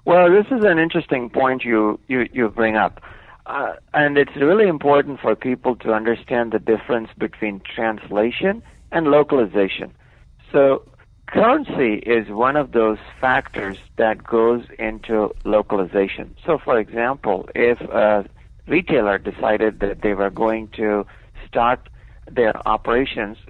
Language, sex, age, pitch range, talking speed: English, male, 60-79, 105-130 Hz, 135 wpm